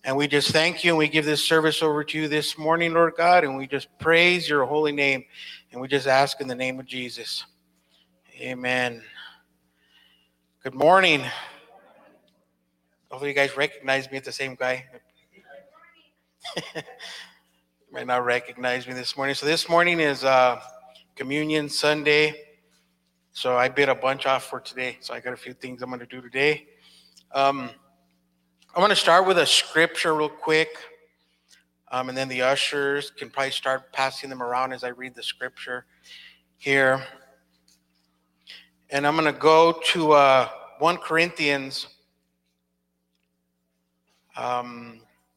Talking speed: 150 wpm